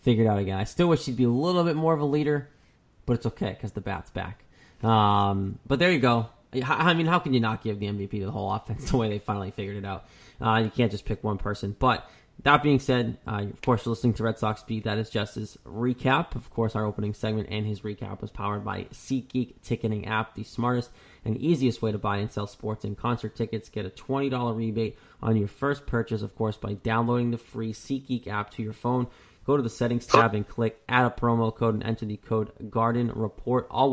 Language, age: English, 20-39